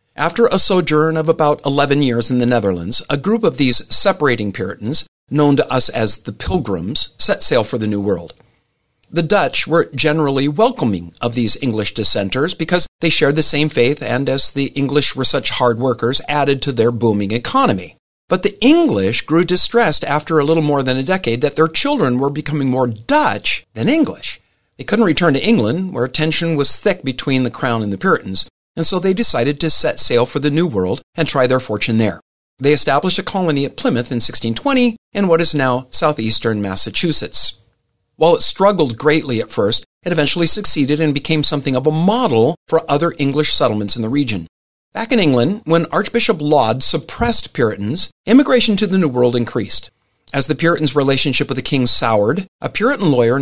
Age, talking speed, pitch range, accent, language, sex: 50-69, 190 wpm, 120-165 Hz, American, English, male